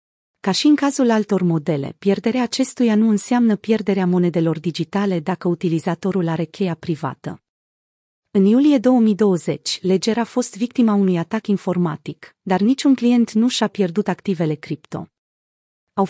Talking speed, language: 140 wpm, Romanian